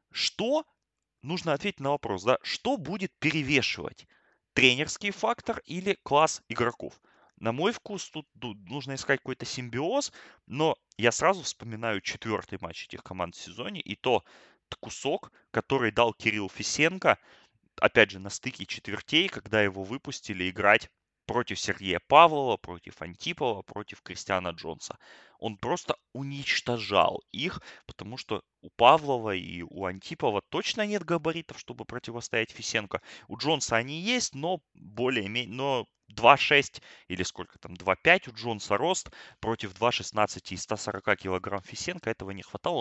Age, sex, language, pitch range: 20-39, male, Russian, 100-145 Hz